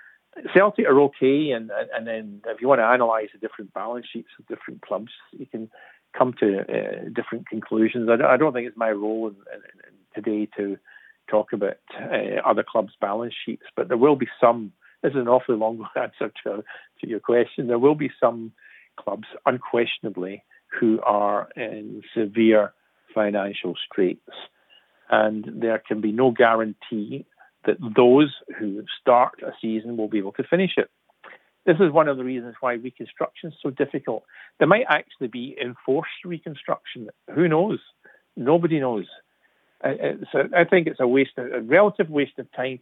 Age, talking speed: 50-69, 175 wpm